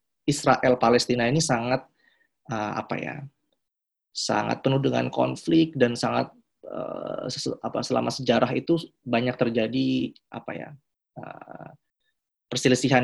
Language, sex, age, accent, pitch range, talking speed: Indonesian, male, 20-39, native, 120-155 Hz, 115 wpm